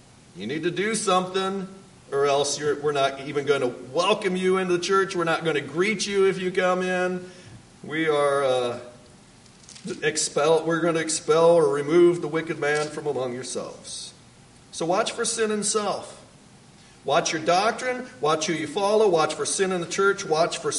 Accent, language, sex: American, English, male